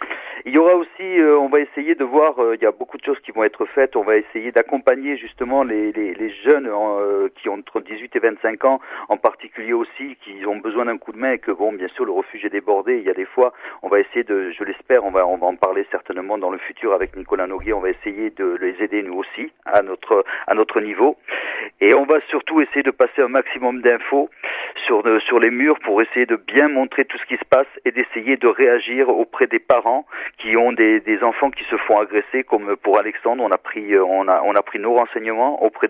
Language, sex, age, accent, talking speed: French, male, 40-59, French, 235 wpm